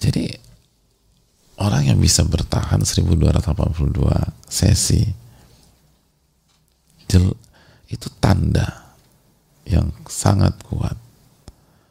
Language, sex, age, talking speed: English, male, 40-59, 60 wpm